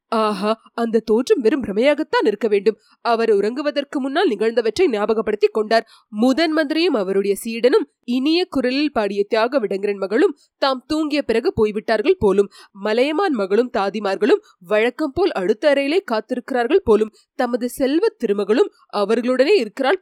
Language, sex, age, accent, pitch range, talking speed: Tamil, female, 20-39, native, 220-320 Hz, 105 wpm